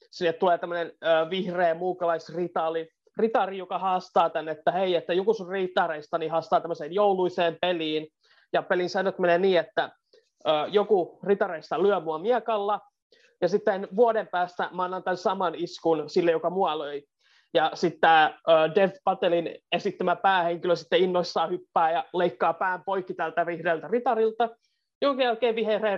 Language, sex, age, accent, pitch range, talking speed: Finnish, male, 20-39, native, 165-200 Hz, 140 wpm